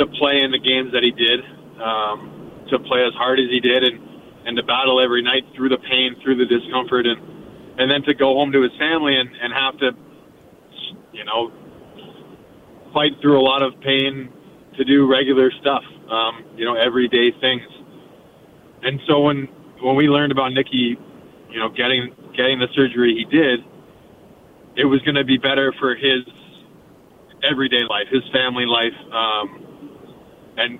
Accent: American